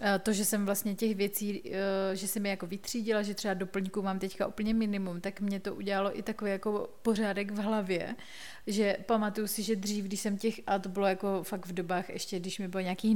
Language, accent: Czech, native